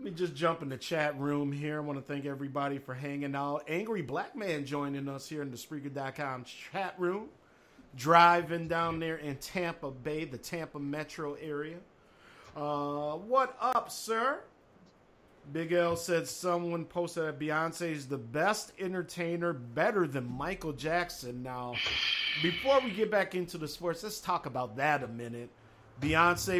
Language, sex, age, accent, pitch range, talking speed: English, male, 50-69, American, 145-175 Hz, 160 wpm